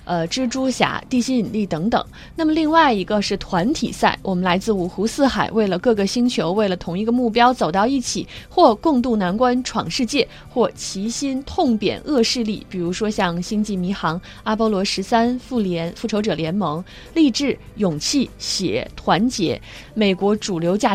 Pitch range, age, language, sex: 185-240 Hz, 20-39, Chinese, female